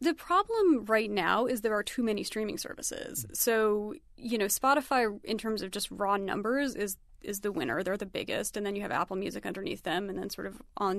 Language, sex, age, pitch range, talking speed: English, female, 30-49, 205-265 Hz, 225 wpm